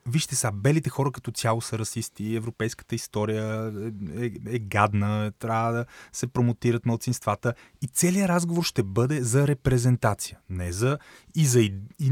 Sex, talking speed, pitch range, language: male, 165 wpm, 105-140 Hz, Bulgarian